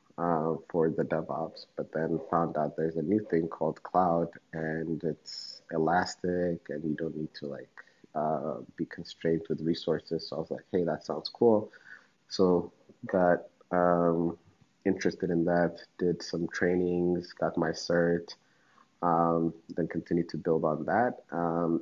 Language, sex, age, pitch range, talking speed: Amharic, male, 30-49, 80-85 Hz, 155 wpm